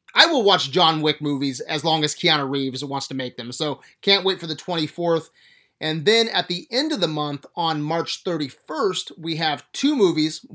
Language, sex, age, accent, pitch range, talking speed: English, male, 30-49, American, 150-185 Hz, 205 wpm